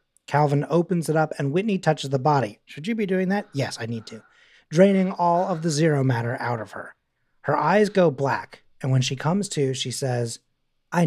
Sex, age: male, 30-49